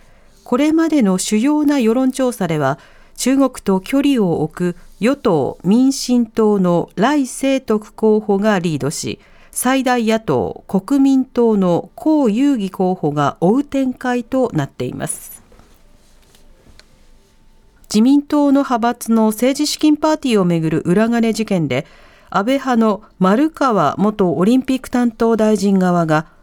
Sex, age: female, 50-69